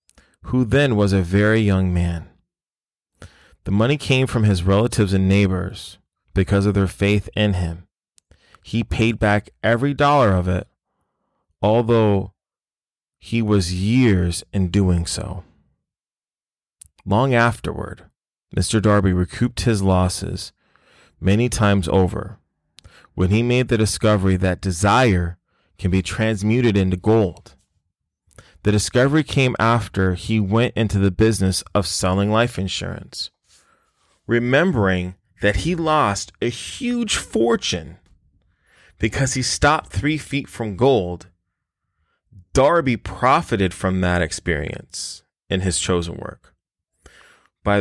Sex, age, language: male, 30-49, English